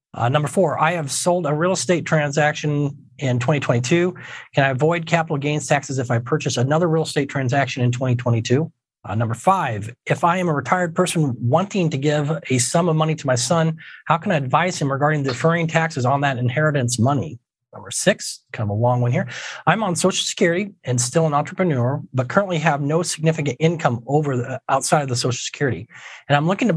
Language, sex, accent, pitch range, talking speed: English, male, American, 130-160 Hz, 205 wpm